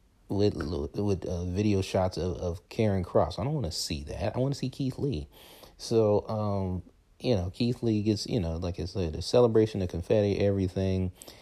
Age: 30-49